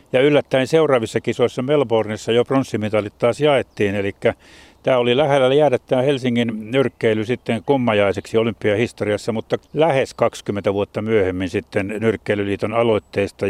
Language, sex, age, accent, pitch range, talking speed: Finnish, male, 50-69, native, 105-130 Hz, 125 wpm